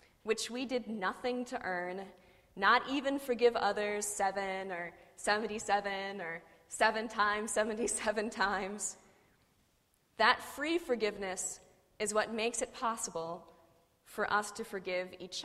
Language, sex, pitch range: English, female, 185-235 Hz